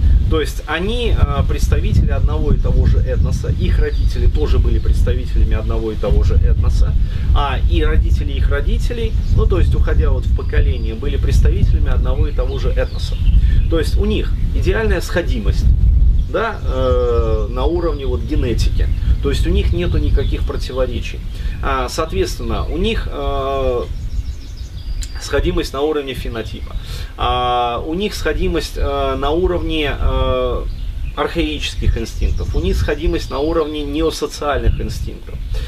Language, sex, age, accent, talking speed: Russian, male, 30-49, native, 140 wpm